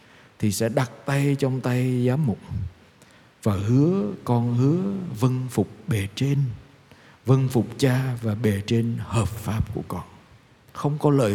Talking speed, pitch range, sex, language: 155 wpm, 110-135 Hz, male, Vietnamese